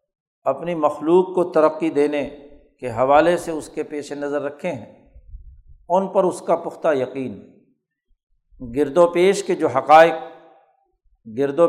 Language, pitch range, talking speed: Urdu, 140-175 Hz, 135 wpm